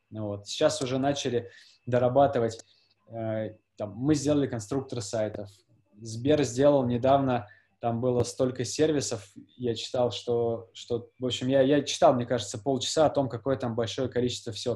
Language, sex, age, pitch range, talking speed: Russian, male, 20-39, 115-140 Hz, 145 wpm